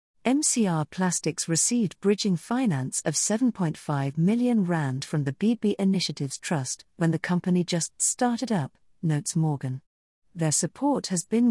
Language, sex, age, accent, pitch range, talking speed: English, female, 40-59, British, 155-215 Hz, 135 wpm